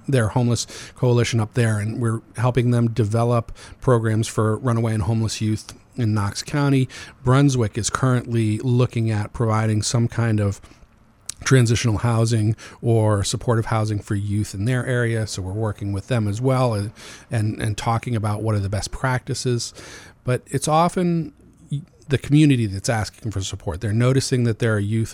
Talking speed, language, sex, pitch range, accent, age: 165 wpm, English, male, 110-130 Hz, American, 40-59